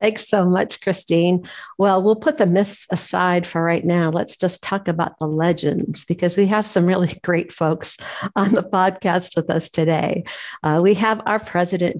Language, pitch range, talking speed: English, 160-195 Hz, 185 wpm